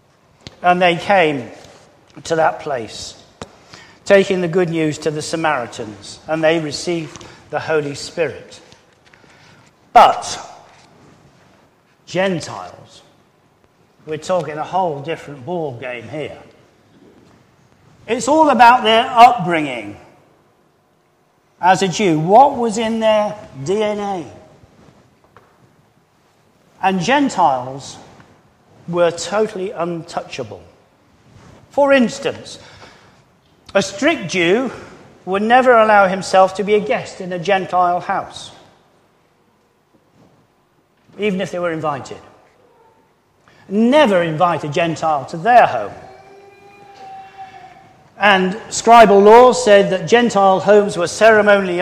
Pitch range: 170-235 Hz